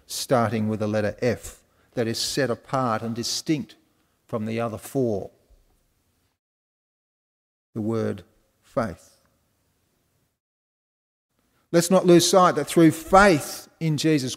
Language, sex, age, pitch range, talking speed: English, male, 40-59, 110-155 Hz, 115 wpm